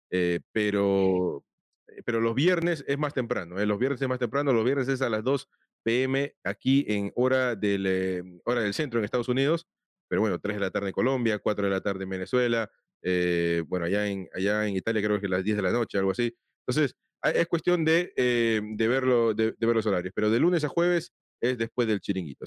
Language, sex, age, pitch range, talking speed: Spanish, male, 30-49, 100-140 Hz, 225 wpm